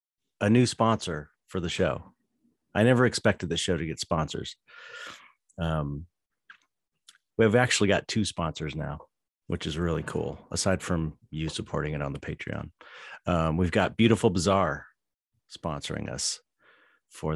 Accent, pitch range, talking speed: American, 80-95 Hz, 140 wpm